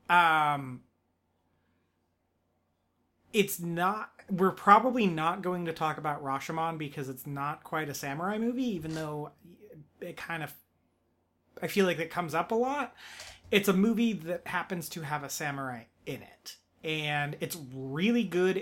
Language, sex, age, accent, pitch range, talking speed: English, male, 30-49, American, 140-180 Hz, 150 wpm